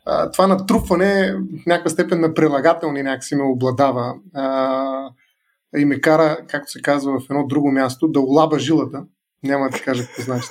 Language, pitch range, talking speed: Bulgarian, 140-170 Hz, 175 wpm